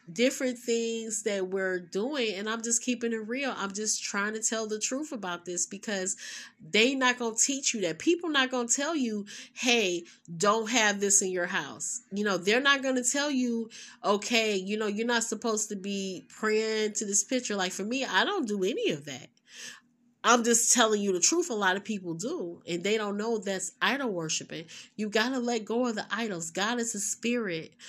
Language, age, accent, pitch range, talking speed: English, 30-49, American, 200-245 Hz, 210 wpm